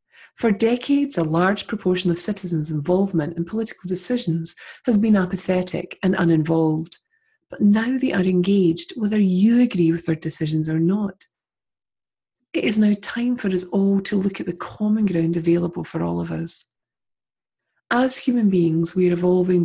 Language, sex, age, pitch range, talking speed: English, female, 30-49, 170-215 Hz, 160 wpm